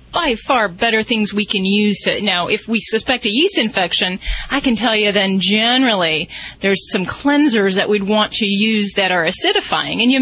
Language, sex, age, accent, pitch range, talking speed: English, female, 30-49, American, 200-260 Hz, 200 wpm